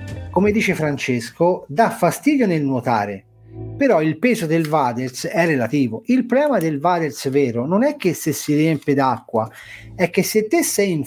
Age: 40-59